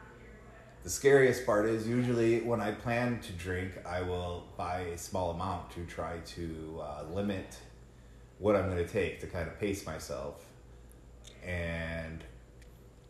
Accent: American